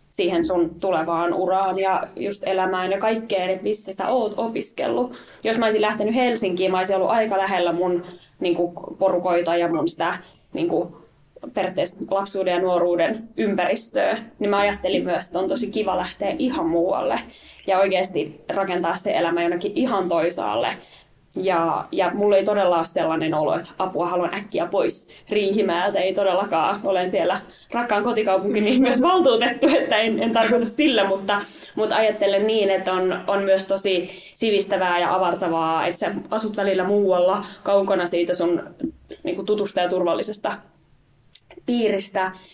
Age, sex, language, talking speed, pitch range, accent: 20-39, female, Finnish, 155 wpm, 185-215 Hz, native